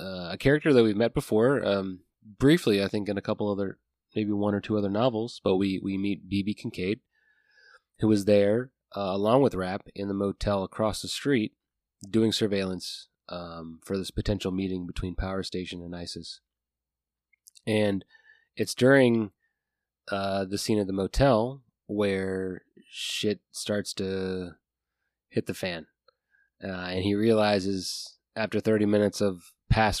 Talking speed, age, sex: 155 wpm, 20-39, male